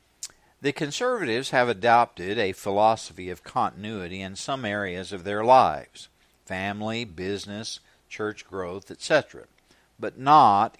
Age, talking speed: 60-79, 115 wpm